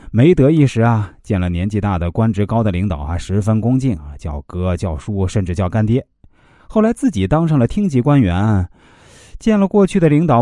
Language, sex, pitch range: Chinese, male, 95-150 Hz